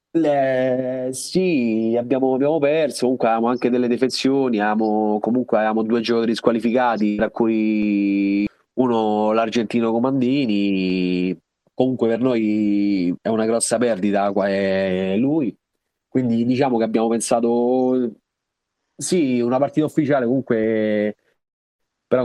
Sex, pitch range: male, 105-125 Hz